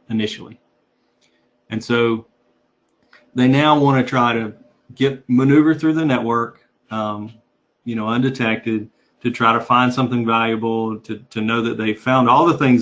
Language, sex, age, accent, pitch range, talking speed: English, male, 40-59, American, 110-135 Hz, 155 wpm